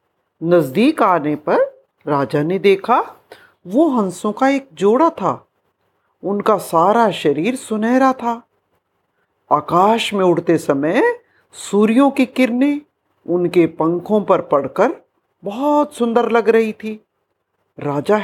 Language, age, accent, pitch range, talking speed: Hindi, 50-69, native, 175-275 Hz, 110 wpm